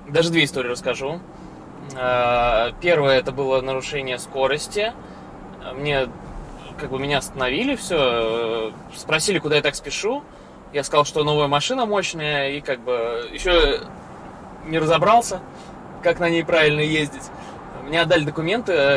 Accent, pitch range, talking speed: native, 140-175 Hz, 125 wpm